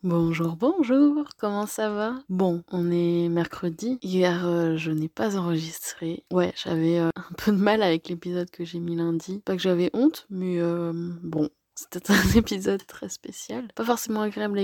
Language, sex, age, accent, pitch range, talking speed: French, female, 20-39, French, 165-200 Hz, 180 wpm